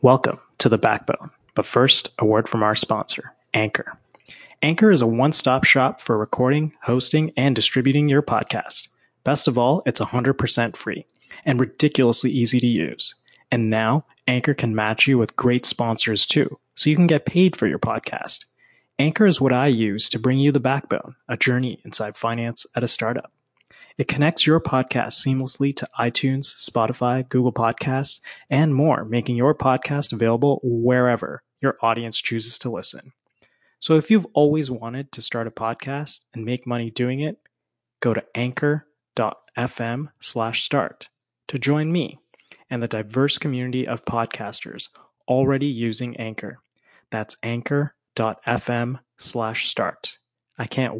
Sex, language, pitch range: male, English, 115-140 Hz